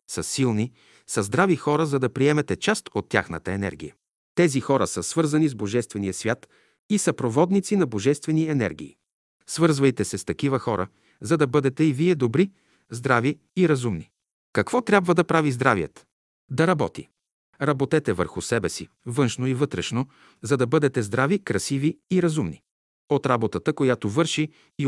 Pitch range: 120-160 Hz